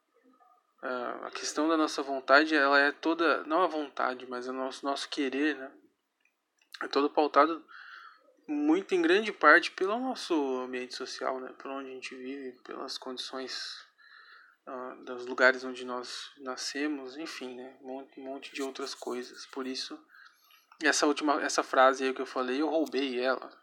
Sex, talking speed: male, 165 wpm